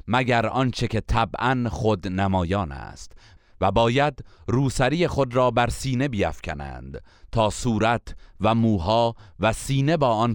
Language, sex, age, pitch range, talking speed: Persian, male, 30-49, 95-120 Hz, 135 wpm